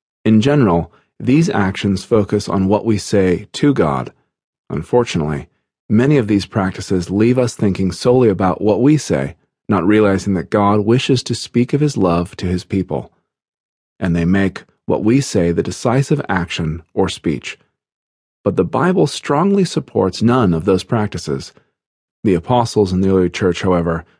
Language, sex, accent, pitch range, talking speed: English, male, American, 90-120 Hz, 160 wpm